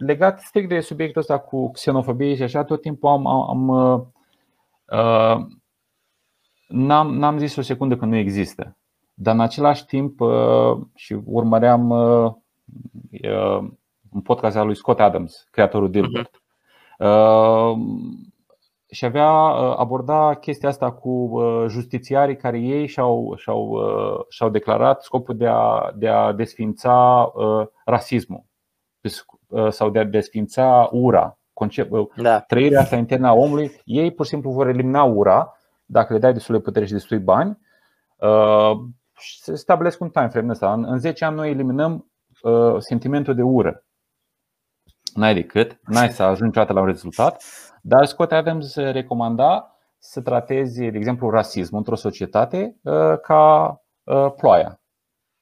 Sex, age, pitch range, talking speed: male, 30-49, 110-145 Hz, 120 wpm